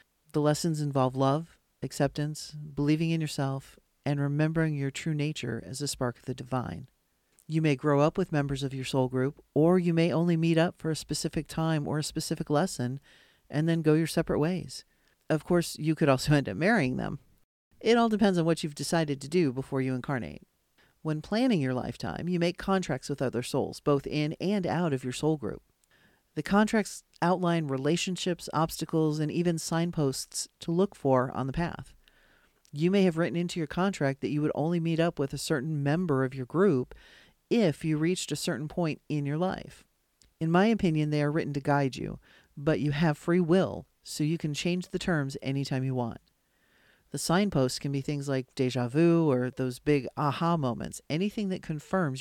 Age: 40-59